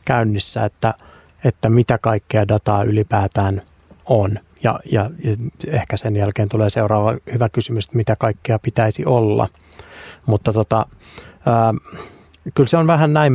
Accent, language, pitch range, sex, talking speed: native, Finnish, 105-120 Hz, male, 140 wpm